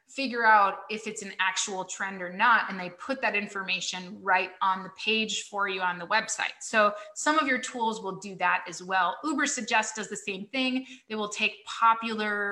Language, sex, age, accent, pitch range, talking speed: English, female, 30-49, American, 190-240 Hz, 205 wpm